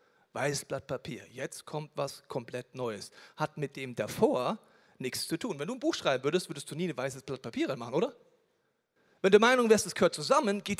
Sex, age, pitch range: male, 40-59, 140-205 Hz